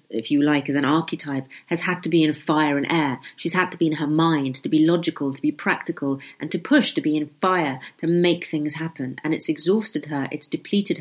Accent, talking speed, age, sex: British, 240 wpm, 30-49, female